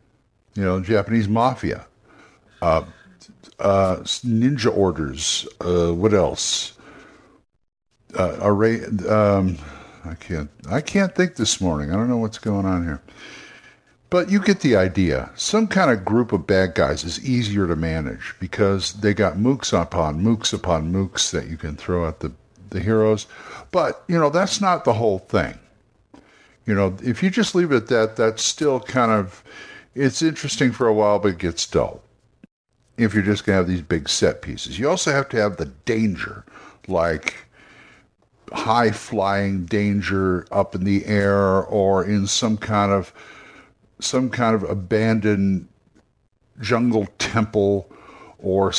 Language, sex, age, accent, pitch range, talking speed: English, male, 60-79, American, 95-115 Hz, 155 wpm